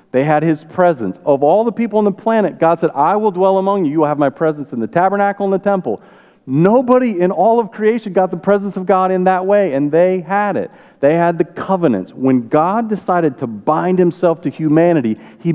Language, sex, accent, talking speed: English, male, American, 230 wpm